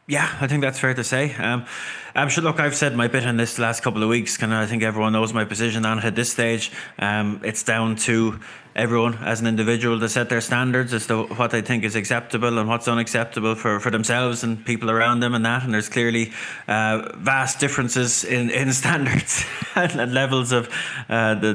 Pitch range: 110-120 Hz